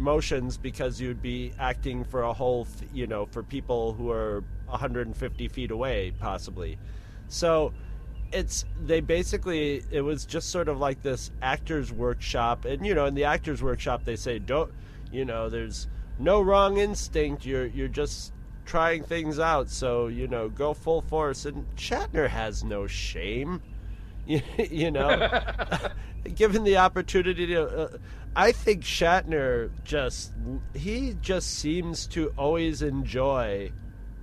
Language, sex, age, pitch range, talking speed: English, male, 30-49, 110-150 Hz, 145 wpm